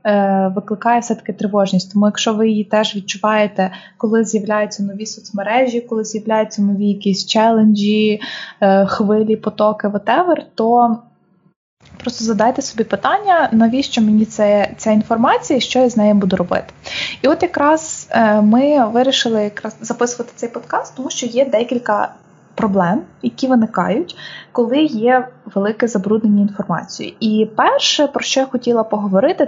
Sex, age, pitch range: female, 20-39, 205-250 Hz